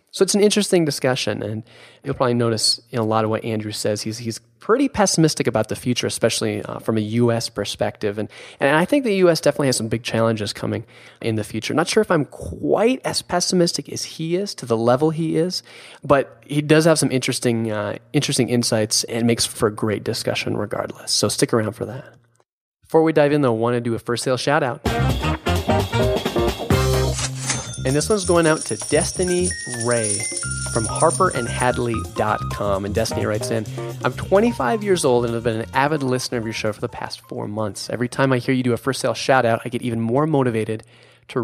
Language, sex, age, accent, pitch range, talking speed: English, male, 20-39, American, 110-140 Hz, 205 wpm